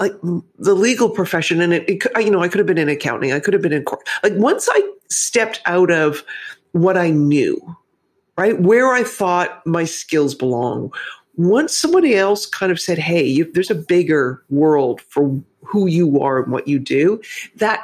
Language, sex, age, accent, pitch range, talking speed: English, female, 40-59, American, 150-215 Hz, 190 wpm